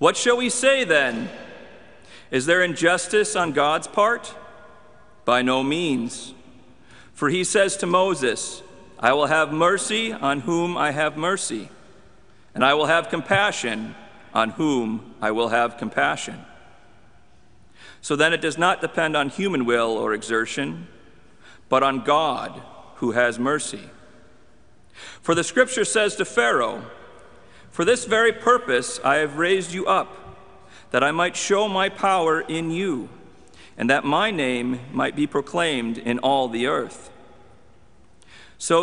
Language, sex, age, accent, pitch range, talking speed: English, male, 50-69, American, 130-195 Hz, 140 wpm